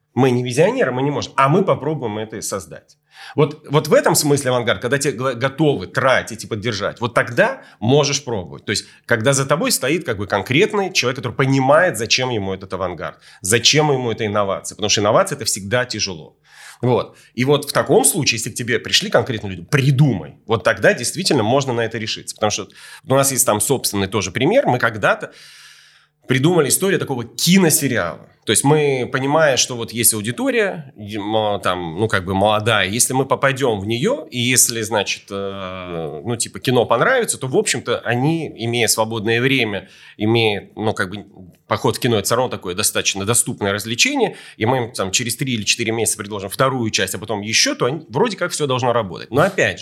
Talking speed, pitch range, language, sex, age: 195 wpm, 105-140 Hz, Russian, male, 30-49